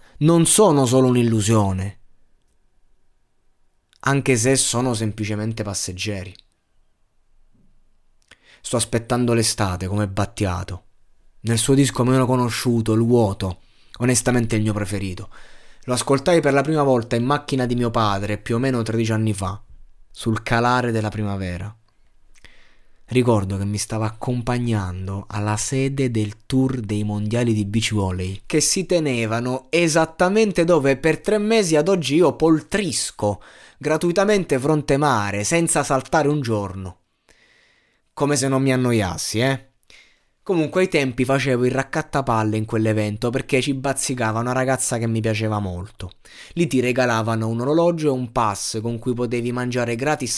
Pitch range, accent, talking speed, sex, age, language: 110-140 Hz, native, 135 wpm, male, 20-39, Italian